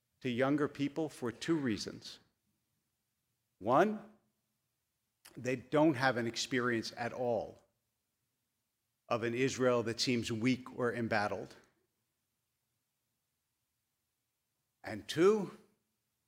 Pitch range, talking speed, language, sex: 110-125 Hz, 90 wpm, English, male